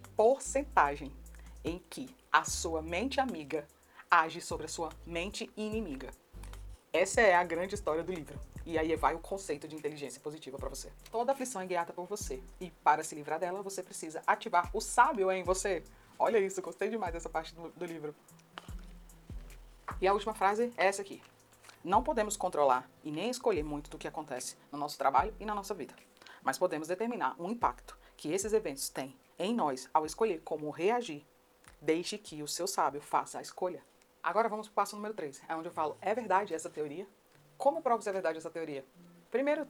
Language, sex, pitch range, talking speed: Portuguese, female, 155-220 Hz, 195 wpm